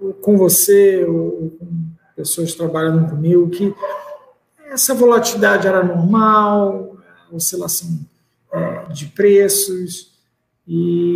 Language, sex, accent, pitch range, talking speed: English, male, Brazilian, 165-195 Hz, 90 wpm